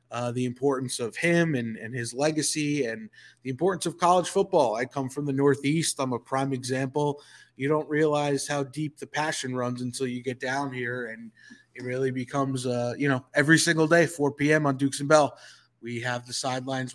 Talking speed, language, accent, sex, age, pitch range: 200 wpm, English, American, male, 20-39, 125-150 Hz